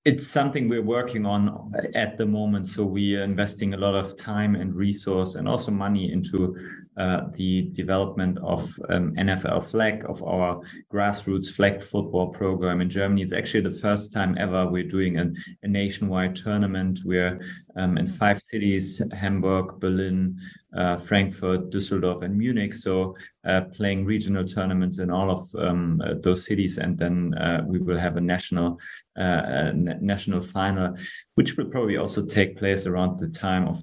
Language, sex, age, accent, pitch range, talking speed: German, male, 30-49, German, 90-100 Hz, 165 wpm